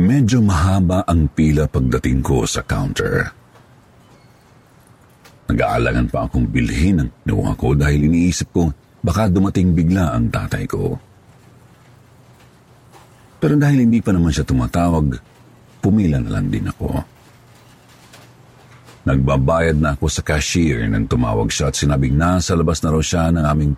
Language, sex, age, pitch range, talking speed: Filipino, male, 50-69, 80-125 Hz, 135 wpm